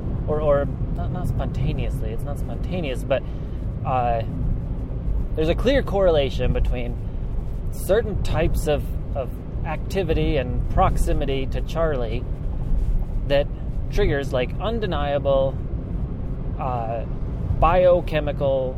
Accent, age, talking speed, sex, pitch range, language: American, 30-49, 95 wpm, male, 115-140 Hz, English